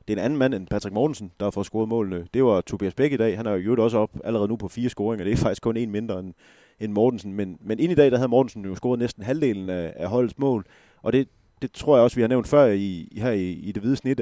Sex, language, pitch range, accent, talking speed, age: male, Danish, 100-125 Hz, native, 300 wpm, 30-49